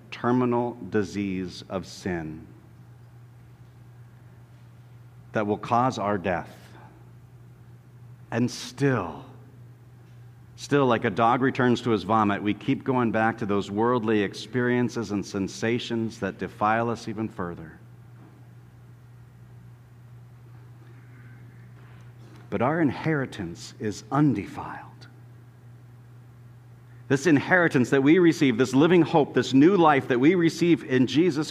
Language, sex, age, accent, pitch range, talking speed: English, male, 50-69, American, 115-125 Hz, 105 wpm